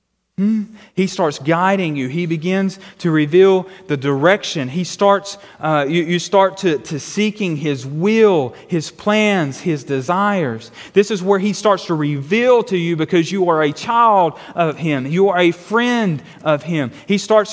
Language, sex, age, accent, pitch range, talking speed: English, male, 30-49, American, 170-230 Hz, 170 wpm